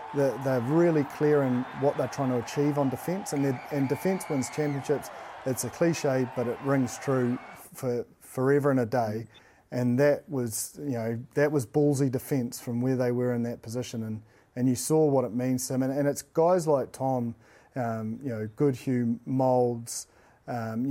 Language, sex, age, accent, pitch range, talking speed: English, male, 30-49, Australian, 120-140 Hz, 185 wpm